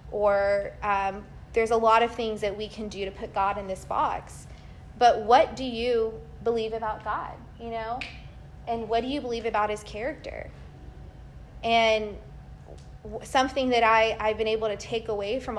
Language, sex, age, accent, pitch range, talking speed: English, female, 20-39, American, 205-235 Hz, 175 wpm